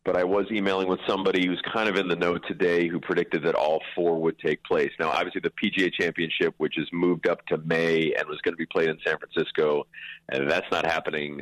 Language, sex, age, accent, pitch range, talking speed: English, male, 40-59, American, 80-110 Hz, 235 wpm